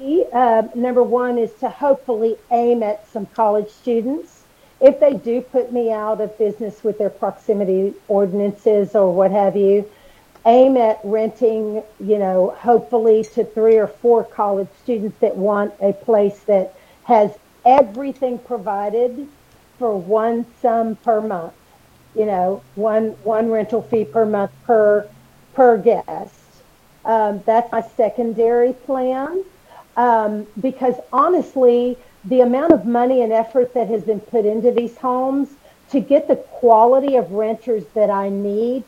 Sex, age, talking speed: female, 50-69, 145 wpm